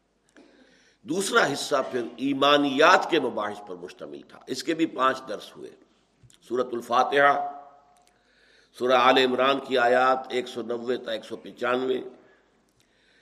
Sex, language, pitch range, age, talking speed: male, Urdu, 125-175 Hz, 60-79, 125 wpm